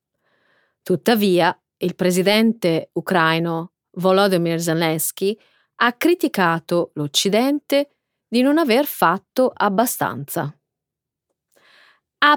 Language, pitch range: Italian, 170-240 Hz